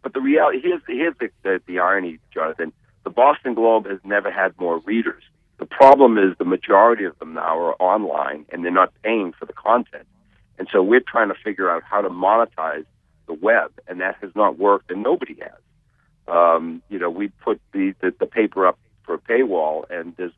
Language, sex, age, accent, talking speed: English, male, 50-69, American, 195 wpm